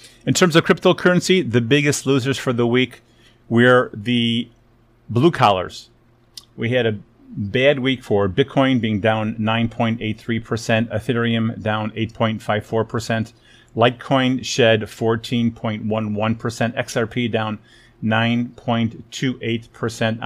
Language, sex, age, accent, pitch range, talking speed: English, male, 40-59, American, 110-130 Hz, 100 wpm